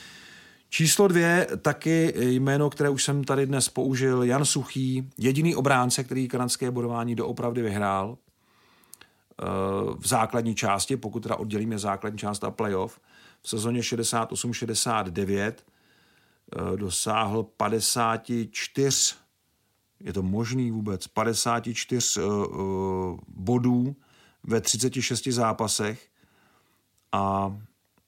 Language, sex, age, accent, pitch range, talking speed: Czech, male, 40-59, native, 100-120 Hz, 105 wpm